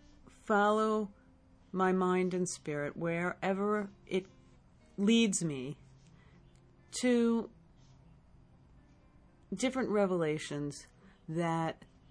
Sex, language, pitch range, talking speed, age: female, English, 155-210 Hz, 65 wpm, 40-59